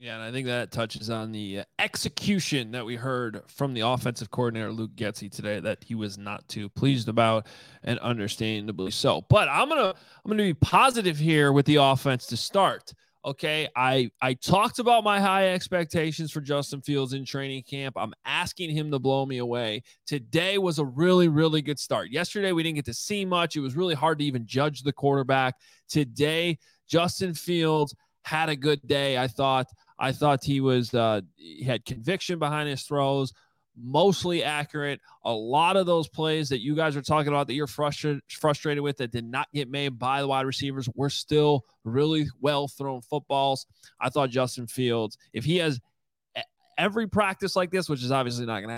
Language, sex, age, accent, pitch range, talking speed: English, male, 20-39, American, 125-155 Hz, 190 wpm